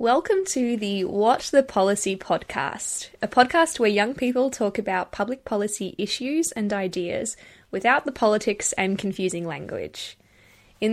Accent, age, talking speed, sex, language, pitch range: Australian, 10-29, 145 wpm, female, English, 190-240 Hz